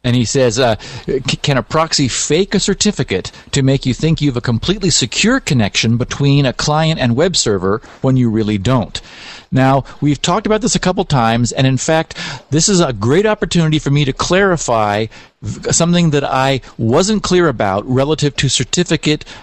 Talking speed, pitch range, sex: 180 wpm, 125-170 Hz, male